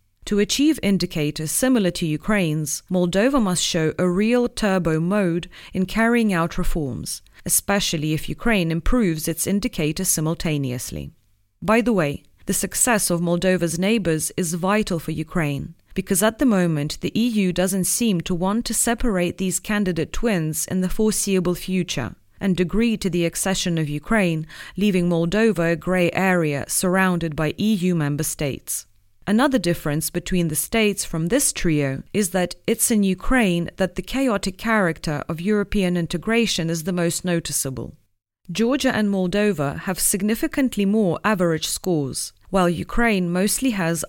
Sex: female